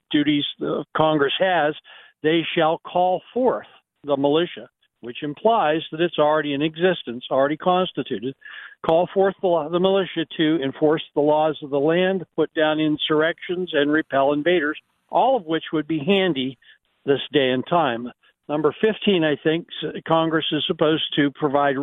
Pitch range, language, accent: 145-170 Hz, English, American